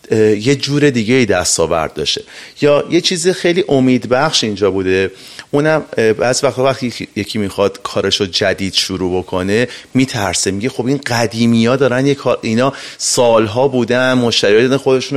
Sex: male